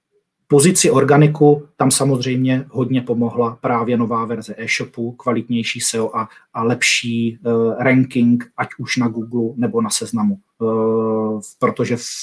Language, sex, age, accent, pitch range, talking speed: Czech, male, 30-49, native, 115-135 Hz, 115 wpm